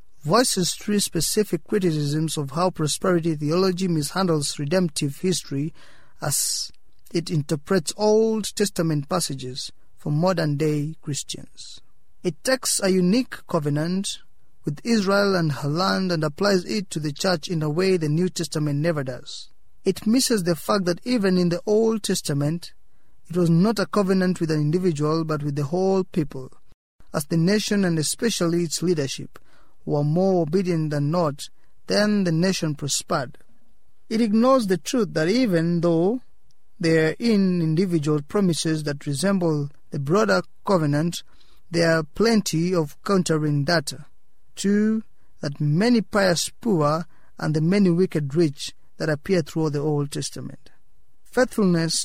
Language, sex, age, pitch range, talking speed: English, male, 30-49, 155-190 Hz, 140 wpm